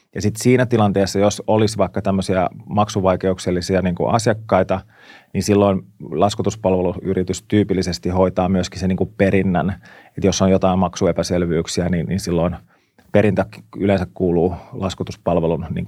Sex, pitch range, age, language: male, 95-105 Hz, 30-49, Finnish